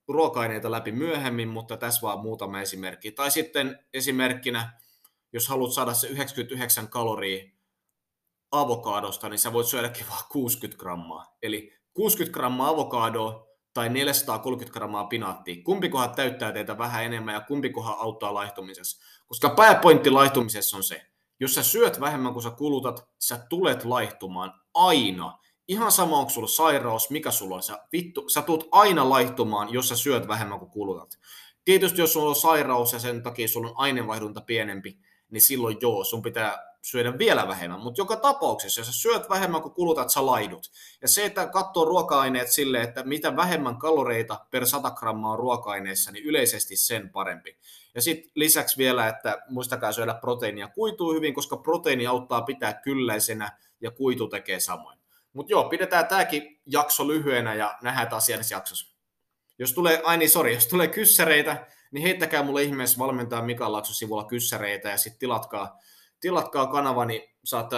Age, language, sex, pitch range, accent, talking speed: 30-49, Finnish, male, 110-145 Hz, native, 155 wpm